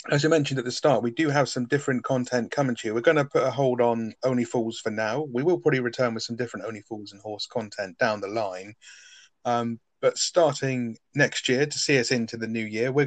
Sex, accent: male, British